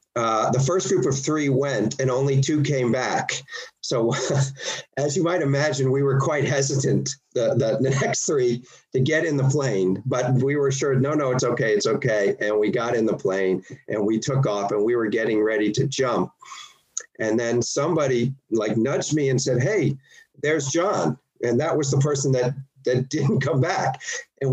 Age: 50-69